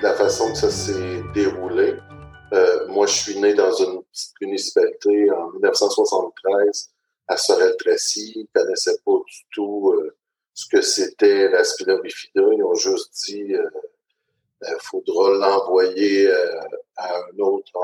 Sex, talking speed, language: male, 150 wpm, French